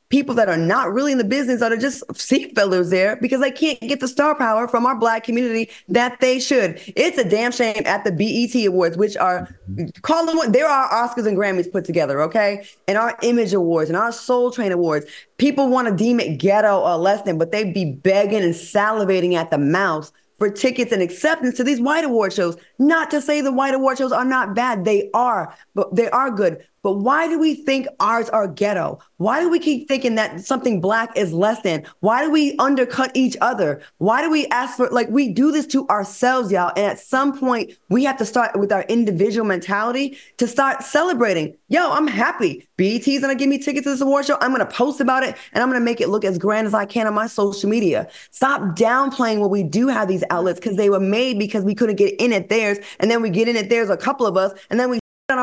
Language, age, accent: English, 20-39, American